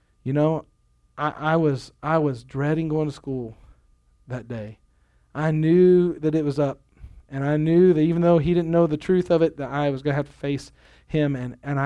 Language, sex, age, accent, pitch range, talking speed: English, male, 40-59, American, 135-175 Hz, 215 wpm